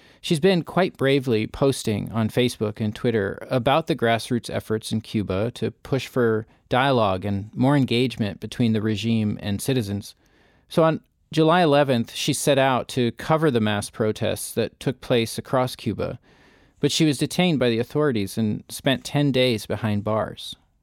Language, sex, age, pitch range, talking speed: English, male, 40-59, 115-140 Hz, 165 wpm